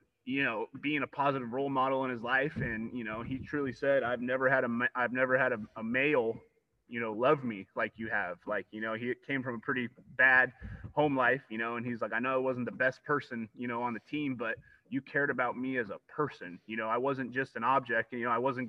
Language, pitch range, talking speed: English, 115-135 Hz, 260 wpm